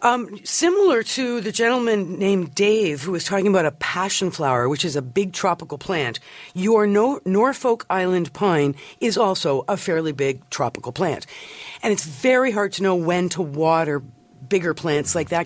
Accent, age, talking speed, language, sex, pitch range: American, 50-69, 175 wpm, English, female, 165-215 Hz